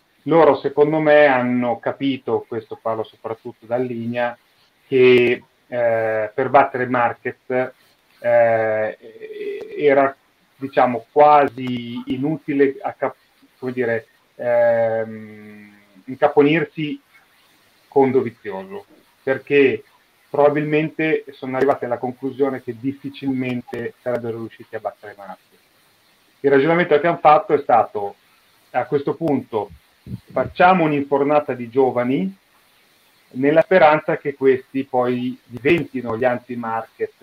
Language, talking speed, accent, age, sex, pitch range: Italian, 105 wpm, native, 30-49, male, 120-145 Hz